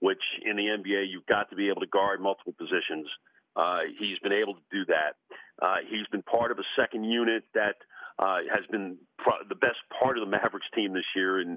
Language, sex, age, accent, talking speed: English, male, 50-69, American, 225 wpm